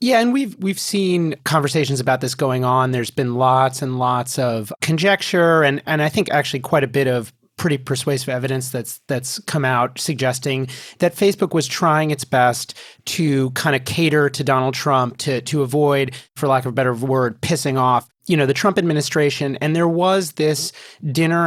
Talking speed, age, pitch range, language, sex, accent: 190 wpm, 30-49, 130-155 Hz, English, male, American